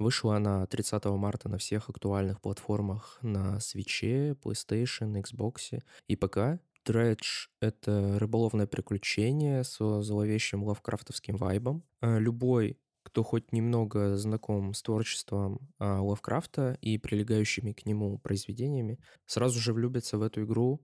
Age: 20-39